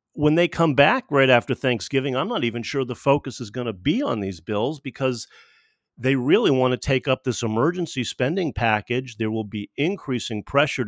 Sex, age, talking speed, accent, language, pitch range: male, 50-69, 200 wpm, American, English, 105-135 Hz